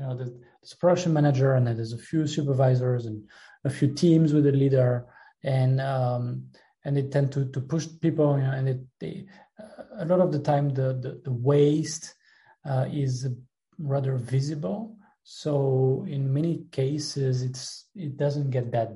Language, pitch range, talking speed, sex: English, 135-155 Hz, 170 wpm, male